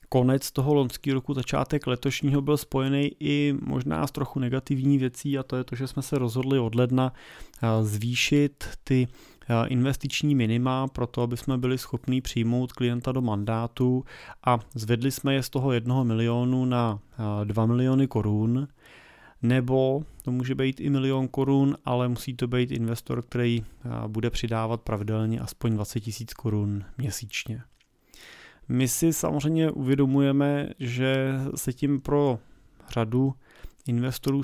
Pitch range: 115-135 Hz